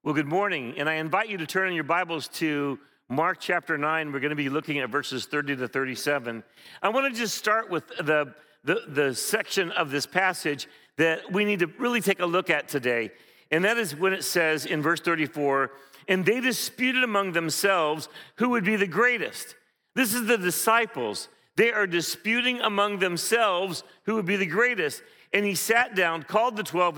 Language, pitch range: English, 155-205 Hz